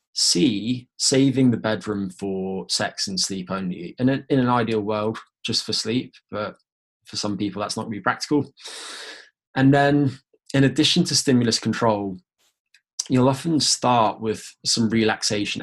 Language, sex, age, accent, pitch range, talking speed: English, male, 20-39, British, 100-120 Hz, 150 wpm